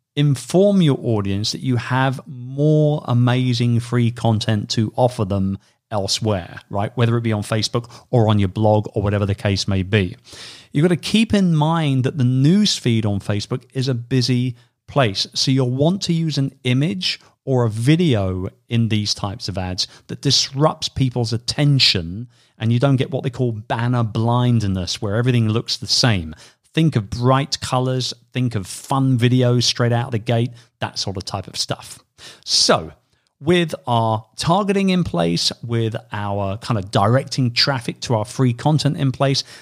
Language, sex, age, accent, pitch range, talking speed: English, male, 40-59, British, 110-135 Hz, 175 wpm